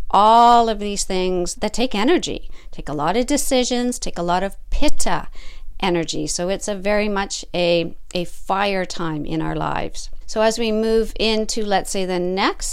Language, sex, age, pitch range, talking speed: English, female, 50-69, 175-225 Hz, 185 wpm